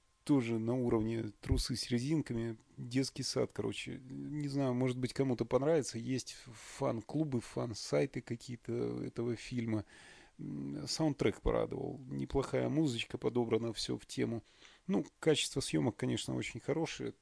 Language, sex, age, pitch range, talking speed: Russian, male, 30-49, 105-130 Hz, 120 wpm